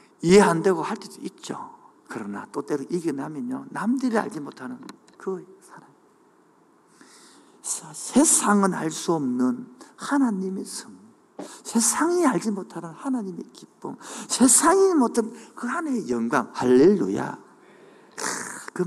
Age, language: 50-69, Korean